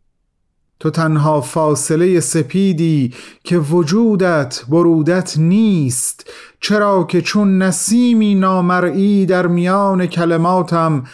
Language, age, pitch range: Persian, 40-59, 125-185 Hz